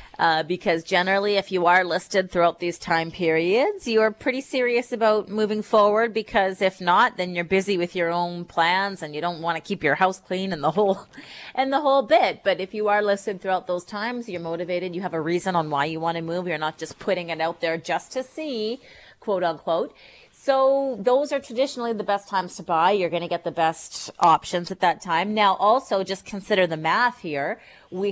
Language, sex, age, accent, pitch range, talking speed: English, female, 30-49, American, 160-200 Hz, 220 wpm